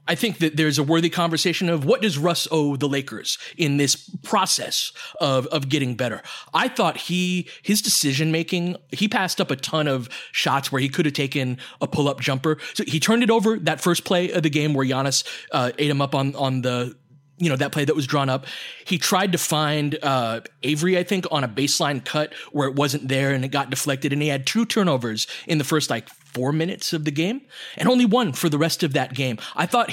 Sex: male